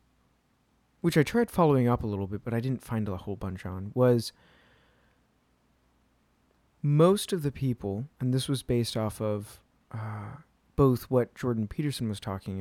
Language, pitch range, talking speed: English, 105-135 Hz, 160 wpm